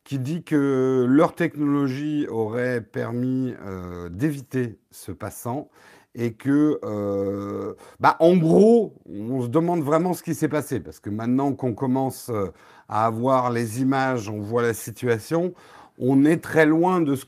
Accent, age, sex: French, 50-69, male